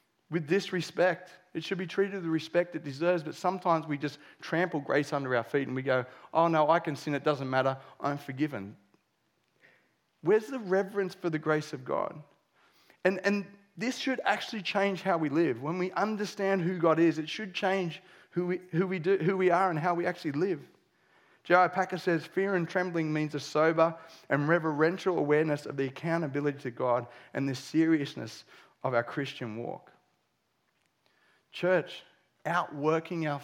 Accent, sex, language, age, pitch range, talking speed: Australian, male, English, 30-49, 145-180 Hz, 180 wpm